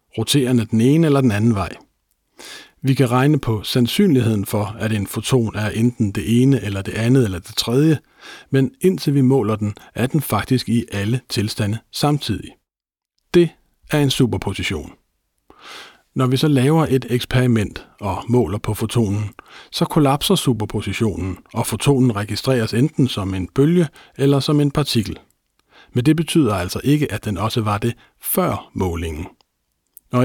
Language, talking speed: Danish, 155 wpm